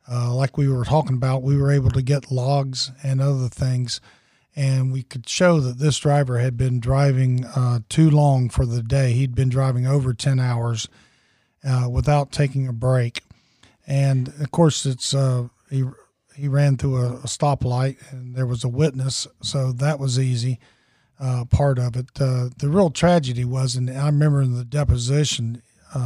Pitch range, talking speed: 125-140 Hz, 175 wpm